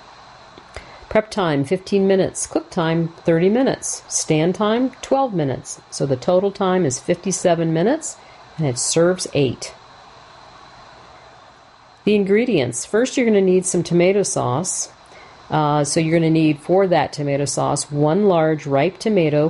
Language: English